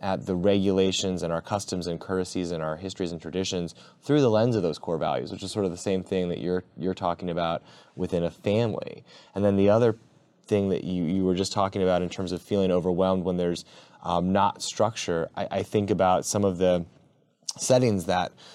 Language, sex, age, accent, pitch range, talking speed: English, male, 20-39, American, 90-105 Hz, 215 wpm